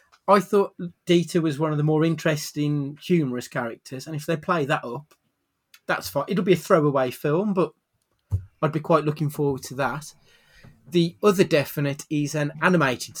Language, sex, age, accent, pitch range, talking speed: English, male, 30-49, British, 125-150 Hz, 175 wpm